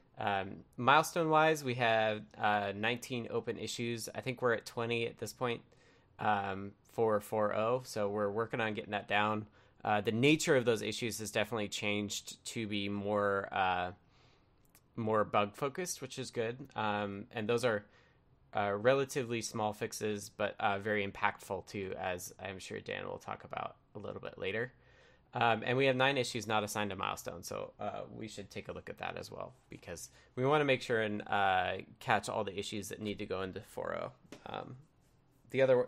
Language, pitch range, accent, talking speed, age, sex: English, 105-125 Hz, American, 180 wpm, 20-39, male